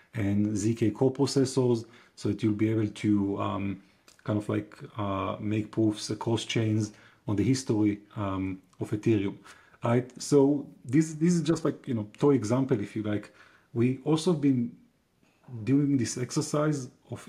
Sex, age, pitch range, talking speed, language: male, 30-49, 105-135 Hz, 160 wpm, English